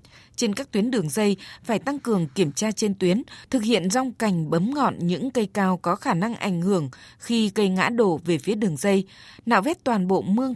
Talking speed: 220 wpm